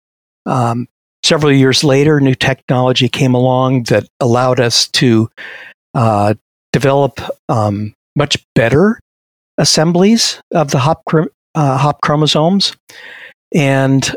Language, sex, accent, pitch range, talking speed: English, male, American, 120-145 Hz, 105 wpm